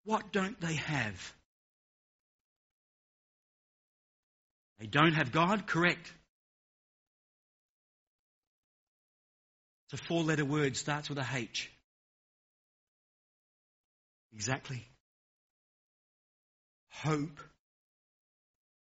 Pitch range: 120-175 Hz